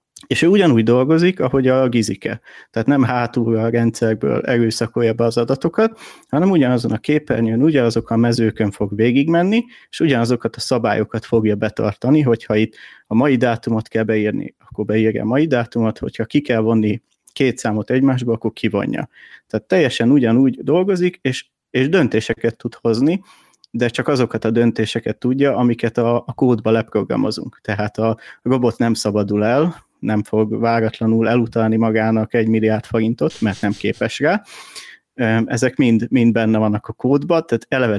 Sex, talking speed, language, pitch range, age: male, 155 wpm, Hungarian, 110-130 Hz, 30-49